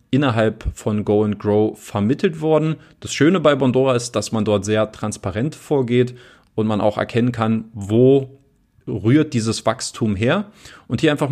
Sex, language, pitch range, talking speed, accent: male, German, 110-130 Hz, 165 wpm, German